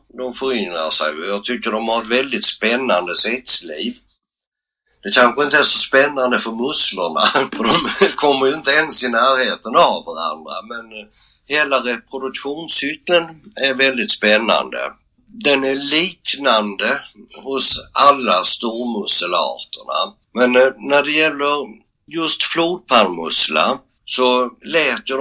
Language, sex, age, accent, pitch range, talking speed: Swedish, male, 60-79, native, 115-145 Hz, 115 wpm